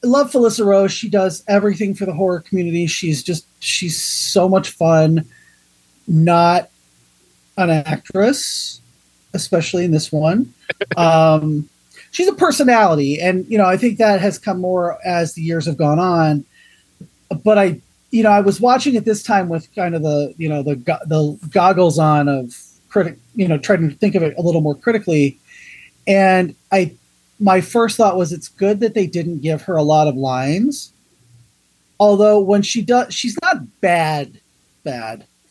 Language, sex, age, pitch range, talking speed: English, male, 30-49, 155-205 Hz, 170 wpm